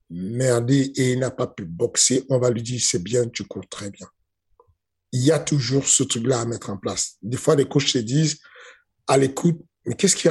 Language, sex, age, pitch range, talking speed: French, male, 50-69, 115-140 Hz, 225 wpm